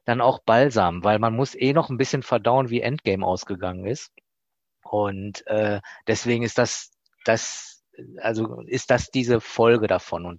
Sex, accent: male, German